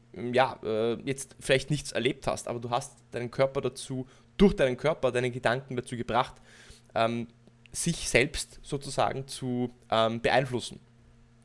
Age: 20-39